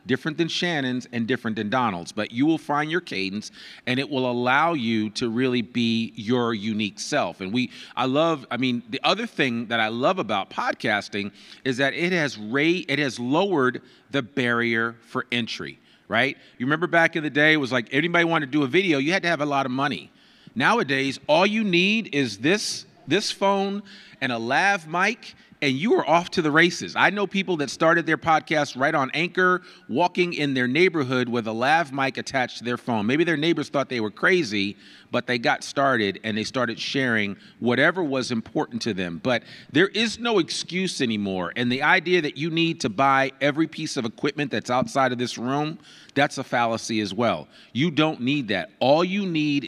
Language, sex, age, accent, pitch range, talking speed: English, male, 40-59, American, 120-165 Hz, 205 wpm